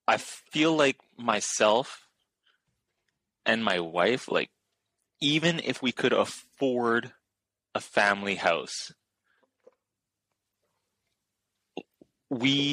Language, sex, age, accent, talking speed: English, male, 20-39, American, 80 wpm